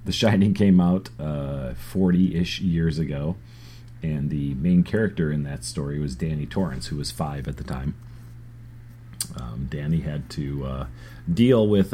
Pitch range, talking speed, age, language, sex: 70-95 Hz, 155 wpm, 40-59, English, male